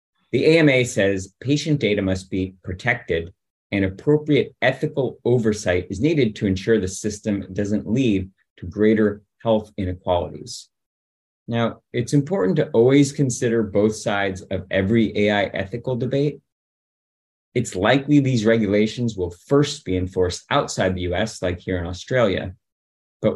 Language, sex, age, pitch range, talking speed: English, male, 30-49, 95-120 Hz, 135 wpm